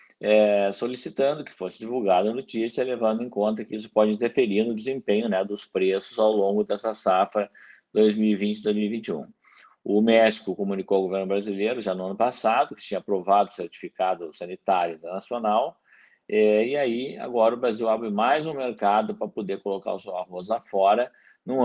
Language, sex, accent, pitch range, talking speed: Portuguese, male, Brazilian, 100-120 Hz, 165 wpm